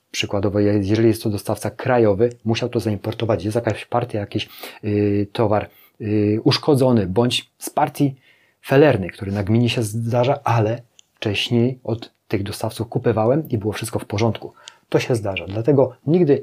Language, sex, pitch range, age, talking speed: Polish, male, 100-120 Hz, 30-49, 155 wpm